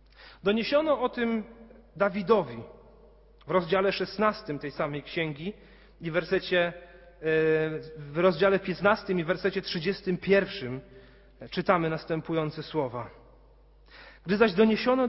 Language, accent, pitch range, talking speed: Polish, native, 145-195 Hz, 100 wpm